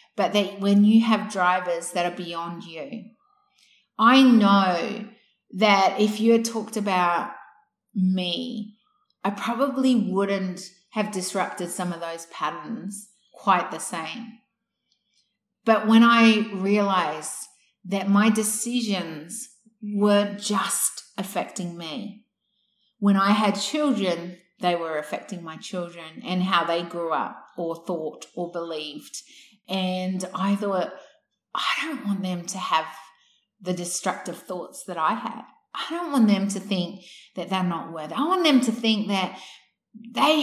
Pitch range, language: 185-240 Hz, English